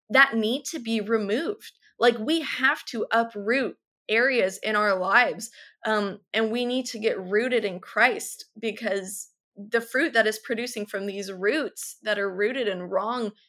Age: 20-39